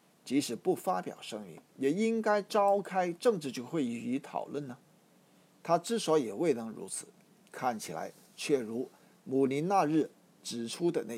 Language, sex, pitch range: Chinese, male, 140-190 Hz